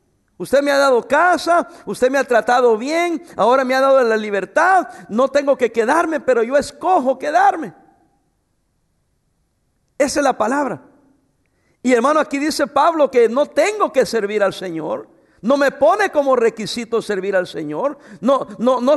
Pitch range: 230-320 Hz